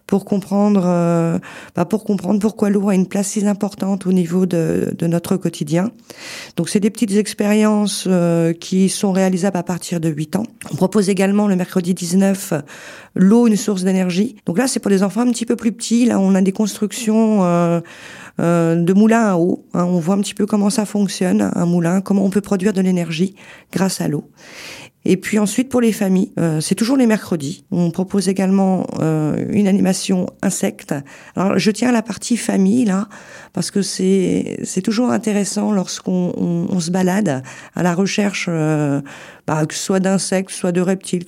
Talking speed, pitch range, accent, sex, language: 195 wpm, 180-210 Hz, French, female, French